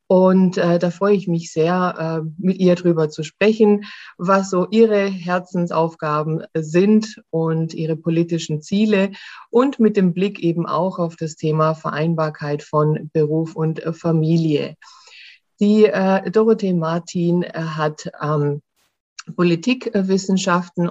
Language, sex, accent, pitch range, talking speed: German, female, German, 160-190 Hz, 125 wpm